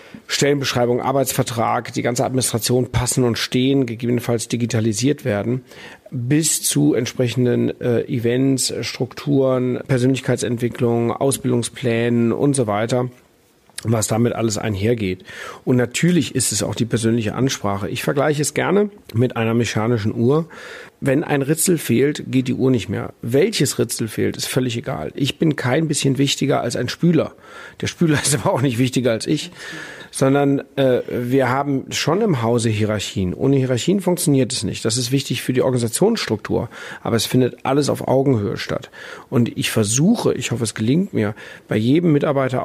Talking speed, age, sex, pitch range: 155 wpm, 40-59, male, 115-140 Hz